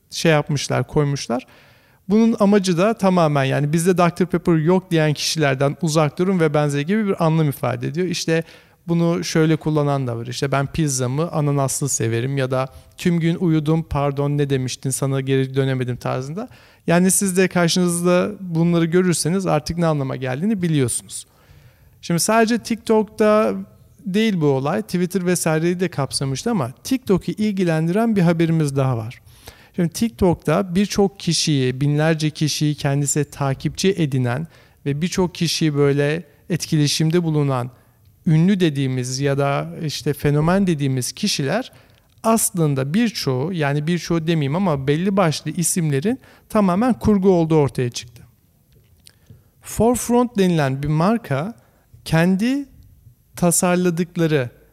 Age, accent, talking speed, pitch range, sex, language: 40-59, native, 130 wpm, 140-180 Hz, male, Turkish